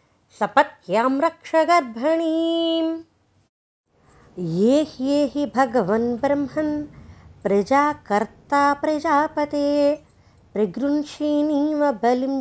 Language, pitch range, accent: Telugu, 270-315 Hz, native